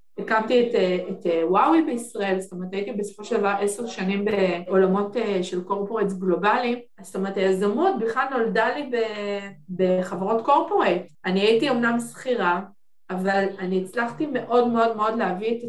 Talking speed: 140 wpm